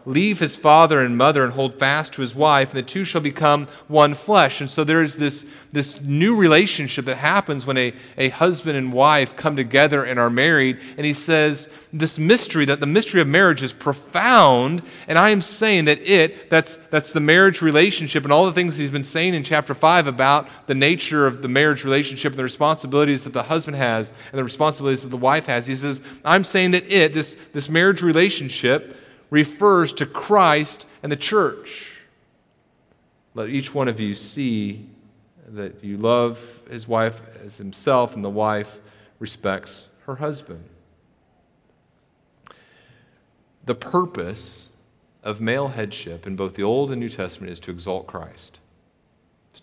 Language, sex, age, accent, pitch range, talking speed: English, male, 30-49, American, 110-155 Hz, 175 wpm